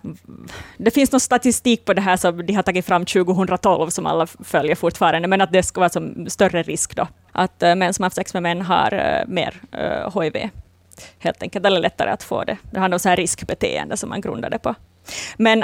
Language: Finnish